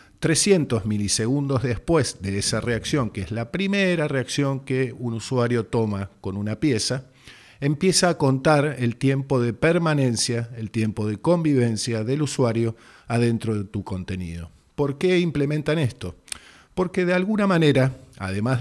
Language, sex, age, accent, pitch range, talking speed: Spanish, male, 50-69, Argentinian, 110-135 Hz, 140 wpm